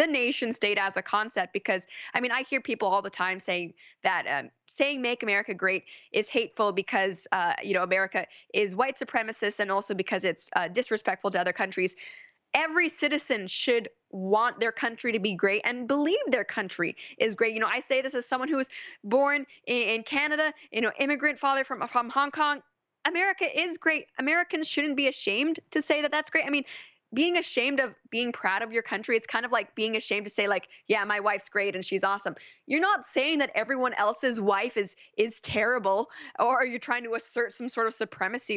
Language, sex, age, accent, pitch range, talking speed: English, female, 10-29, American, 205-280 Hz, 210 wpm